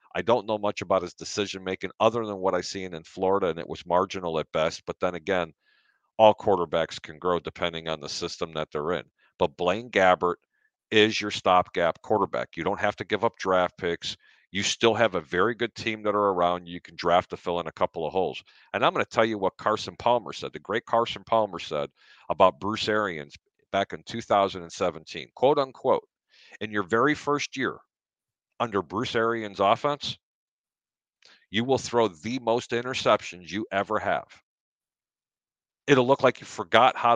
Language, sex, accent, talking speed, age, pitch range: English, male, American, 185 wpm, 50-69, 95-115 Hz